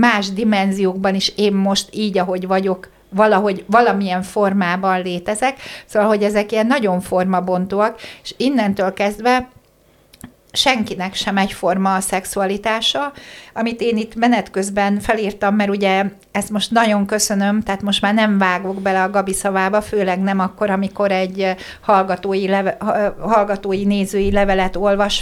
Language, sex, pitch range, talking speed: Hungarian, female, 195-215 Hz, 135 wpm